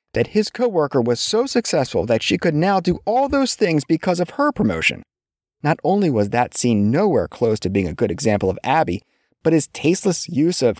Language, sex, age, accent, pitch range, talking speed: English, male, 30-49, American, 115-175 Hz, 205 wpm